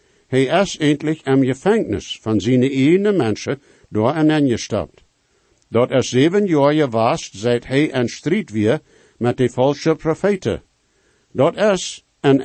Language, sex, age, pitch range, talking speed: English, male, 60-79, 125-175 Hz, 150 wpm